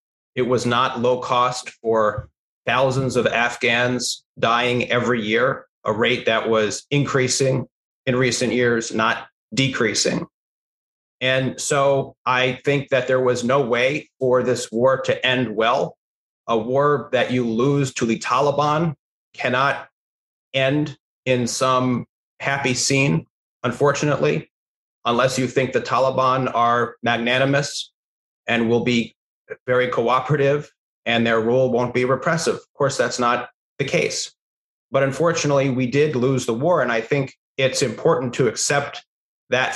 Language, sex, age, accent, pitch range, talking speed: English, male, 30-49, American, 120-135 Hz, 135 wpm